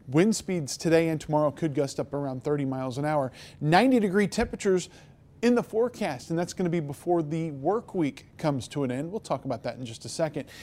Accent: American